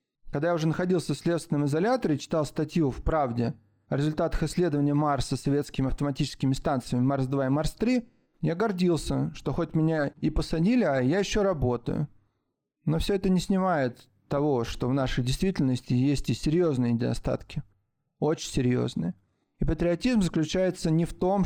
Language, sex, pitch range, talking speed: Russian, male, 130-175 Hz, 155 wpm